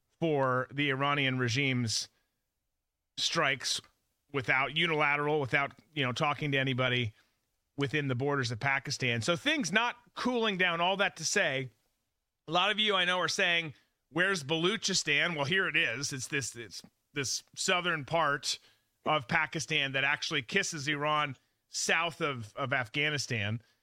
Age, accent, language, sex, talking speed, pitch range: 30-49, American, English, male, 145 wpm, 130-190 Hz